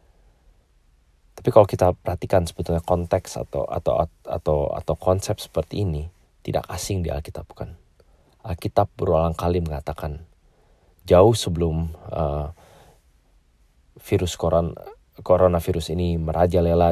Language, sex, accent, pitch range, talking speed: English, male, Indonesian, 80-90 Hz, 110 wpm